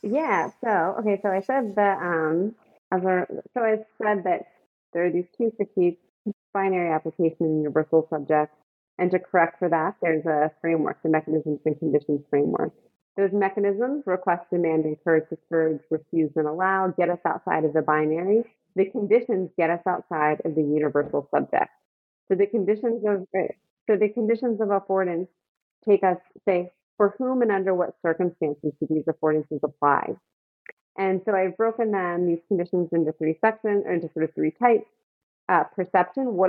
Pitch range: 160-200 Hz